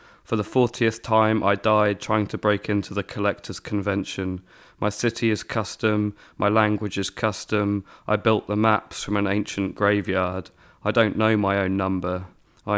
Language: English